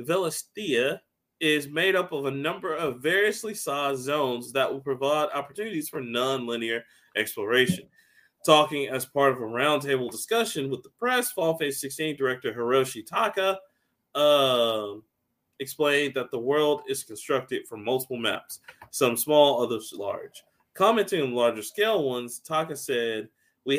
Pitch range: 120-155 Hz